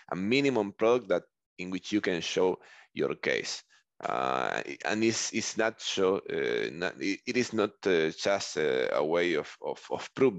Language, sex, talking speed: English, male, 180 wpm